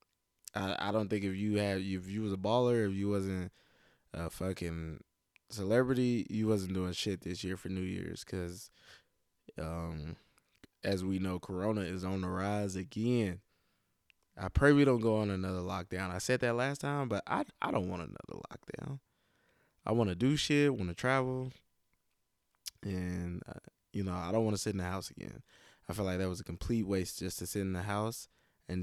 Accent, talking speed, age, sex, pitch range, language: American, 195 wpm, 20-39, male, 90-105 Hz, English